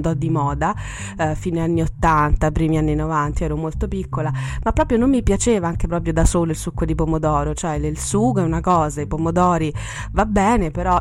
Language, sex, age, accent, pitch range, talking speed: Italian, female, 30-49, native, 140-165 Hz, 200 wpm